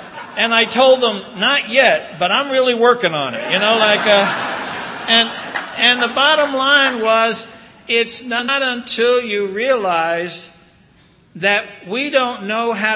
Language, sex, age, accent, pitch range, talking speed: English, male, 60-79, American, 165-235 Hz, 150 wpm